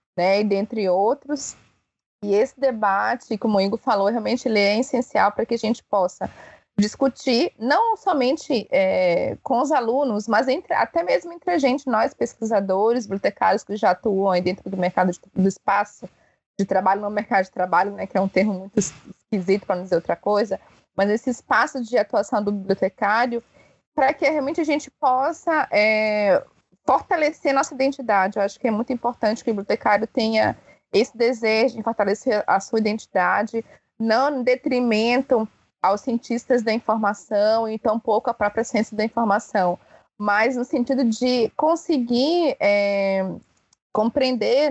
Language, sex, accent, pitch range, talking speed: Portuguese, female, Brazilian, 200-260 Hz, 160 wpm